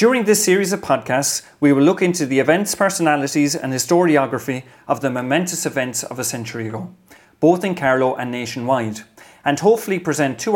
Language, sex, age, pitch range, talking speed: English, male, 30-49, 125-165 Hz, 175 wpm